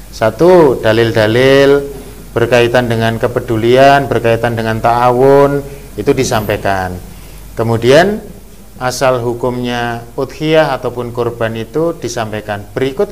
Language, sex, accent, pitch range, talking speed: Indonesian, male, native, 120-155 Hz, 85 wpm